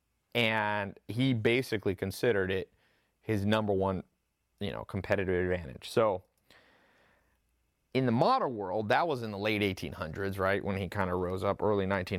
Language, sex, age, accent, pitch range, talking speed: English, male, 30-49, American, 95-120 Hz, 155 wpm